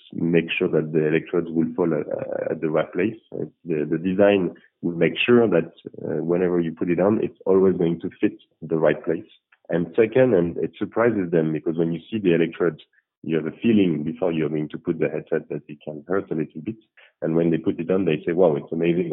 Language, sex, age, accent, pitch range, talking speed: English, male, 40-59, French, 80-95 Hz, 230 wpm